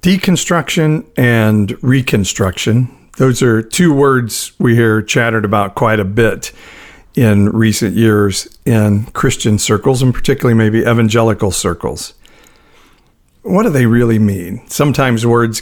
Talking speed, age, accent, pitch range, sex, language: 125 wpm, 50-69, American, 105-130 Hz, male, English